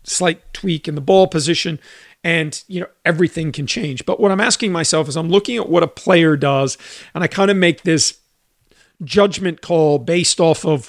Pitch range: 145-175 Hz